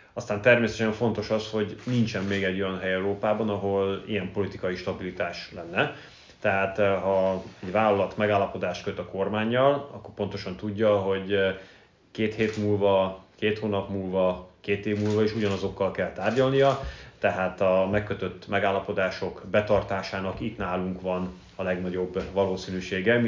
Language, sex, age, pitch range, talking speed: Hungarian, male, 30-49, 95-110 Hz, 135 wpm